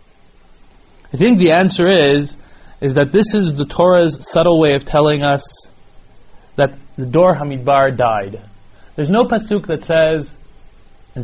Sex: male